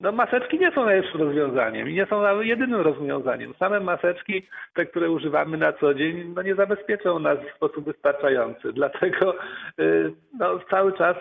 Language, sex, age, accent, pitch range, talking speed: Polish, male, 50-69, native, 150-215 Hz, 165 wpm